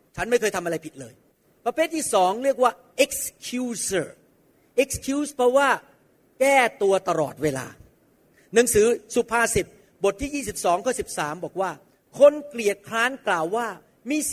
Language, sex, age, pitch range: Thai, male, 40-59, 195-265 Hz